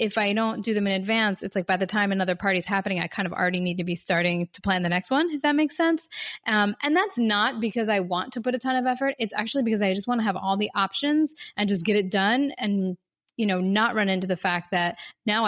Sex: female